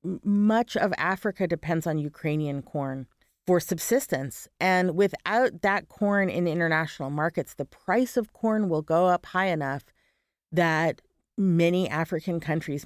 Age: 30-49